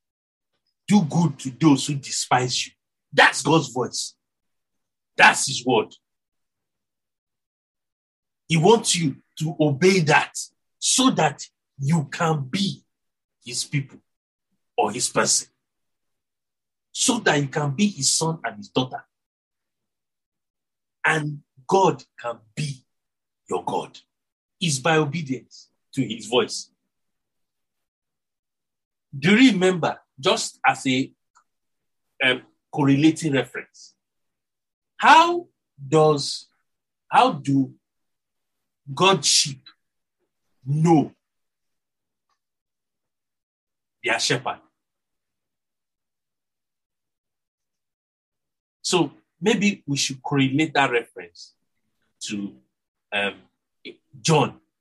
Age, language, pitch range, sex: 50-69, English, 120-160 Hz, male